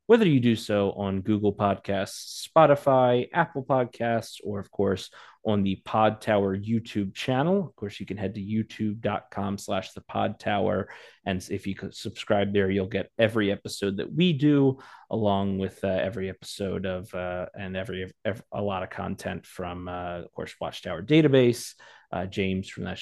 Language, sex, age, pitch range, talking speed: English, male, 30-49, 95-115 Hz, 175 wpm